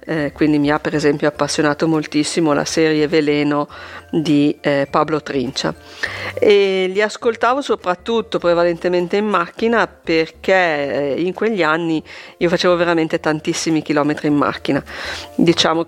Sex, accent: female, native